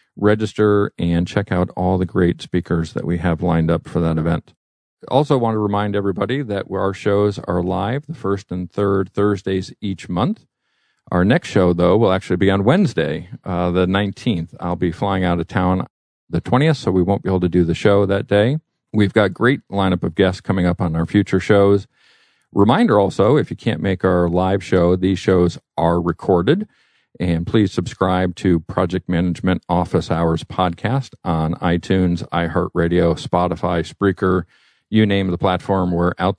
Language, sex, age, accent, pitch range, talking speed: English, male, 50-69, American, 90-105 Hz, 180 wpm